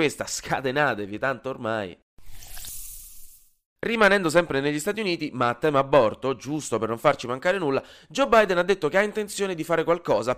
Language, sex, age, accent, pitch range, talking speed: Italian, male, 30-49, native, 110-160 Hz, 170 wpm